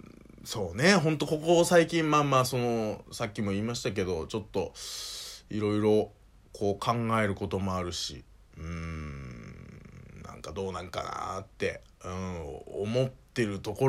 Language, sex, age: Japanese, male, 20-39